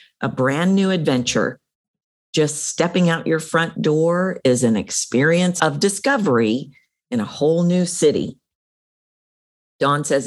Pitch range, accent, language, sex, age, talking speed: 130-170 Hz, American, English, female, 50-69, 130 wpm